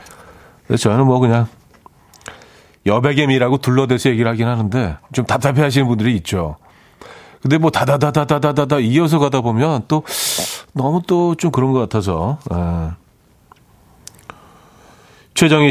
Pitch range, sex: 110-145 Hz, male